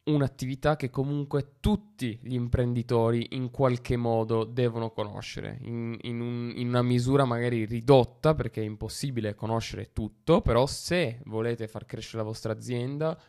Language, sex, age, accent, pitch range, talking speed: Italian, male, 20-39, native, 105-125 Hz, 135 wpm